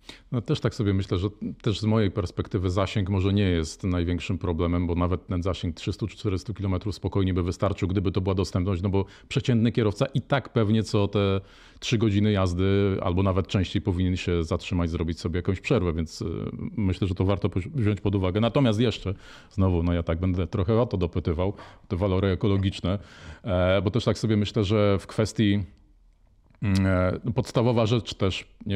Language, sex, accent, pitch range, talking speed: Polish, male, native, 90-105 Hz, 180 wpm